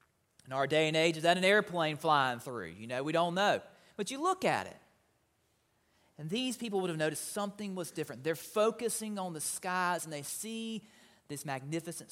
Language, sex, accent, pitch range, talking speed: English, male, American, 125-180 Hz, 200 wpm